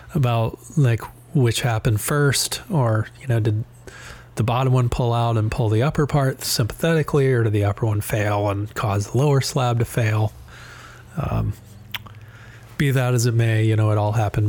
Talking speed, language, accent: 180 wpm, English, American